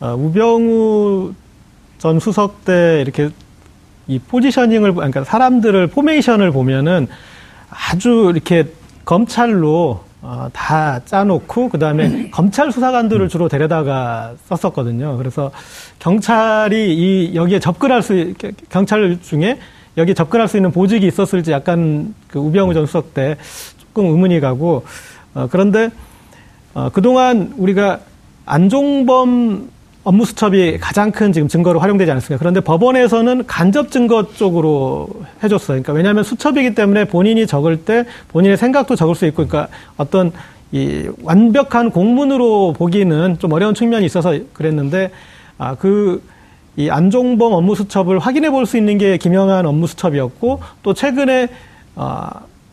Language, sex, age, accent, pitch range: Korean, male, 40-59, native, 160-225 Hz